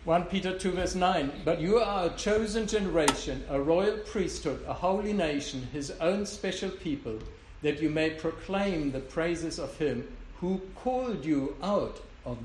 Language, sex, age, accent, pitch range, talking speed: English, male, 60-79, German, 120-175 Hz, 165 wpm